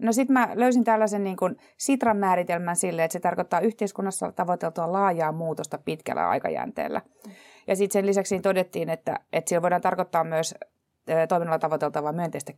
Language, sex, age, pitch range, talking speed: Finnish, female, 30-49, 165-210 Hz, 155 wpm